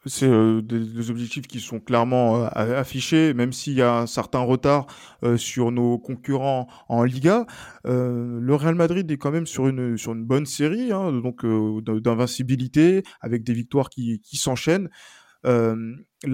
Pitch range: 120-155 Hz